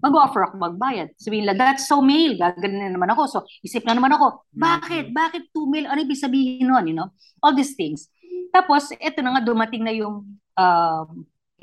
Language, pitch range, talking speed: Filipino, 175-250 Hz, 205 wpm